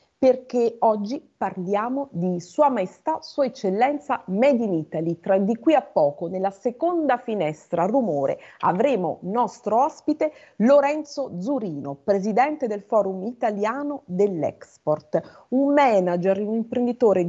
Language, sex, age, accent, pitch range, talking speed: Italian, female, 40-59, native, 190-275 Hz, 120 wpm